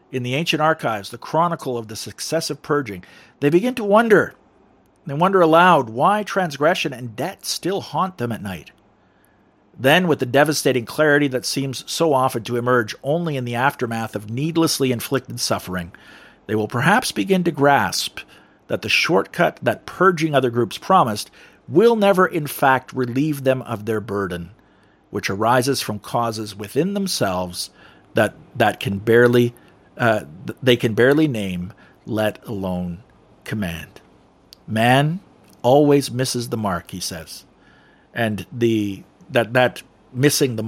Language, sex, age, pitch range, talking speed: English, male, 50-69, 110-140 Hz, 145 wpm